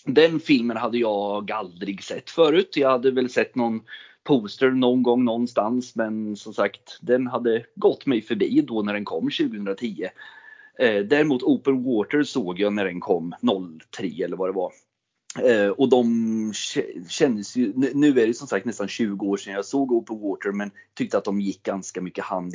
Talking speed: 180 wpm